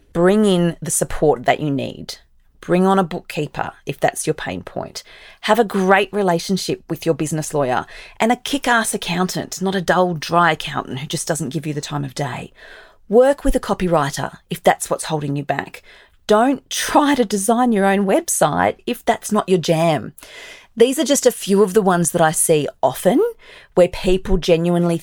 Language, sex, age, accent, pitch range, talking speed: English, female, 40-59, Australian, 145-195 Hz, 190 wpm